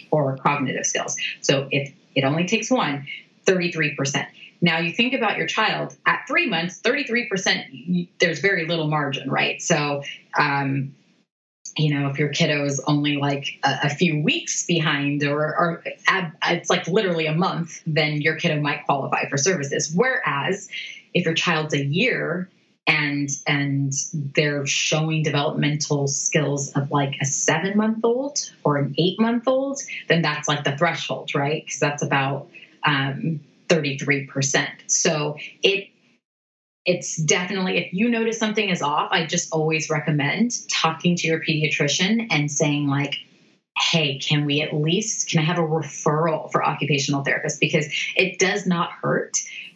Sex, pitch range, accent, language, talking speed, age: female, 145-180 Hz, American, English, 155 wpm, 30-49